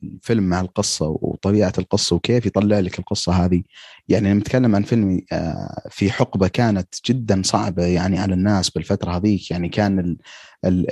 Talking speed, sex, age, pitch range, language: 155 wpm, male, 30-49, 90-110 Hz, Arabic